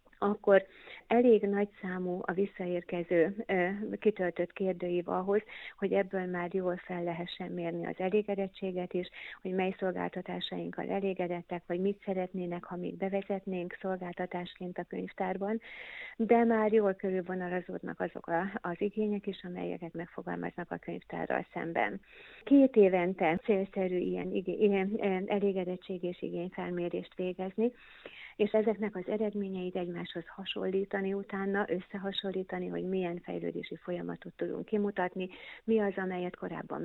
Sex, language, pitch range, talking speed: female, Hungarian, 180-205 Hz, 120 wpm